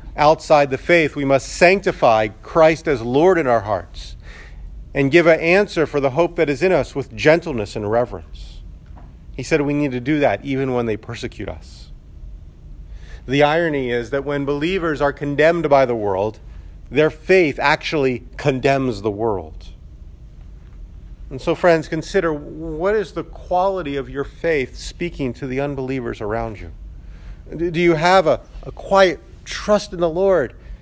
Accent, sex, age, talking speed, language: American, male, 40-59, 160 wpm, English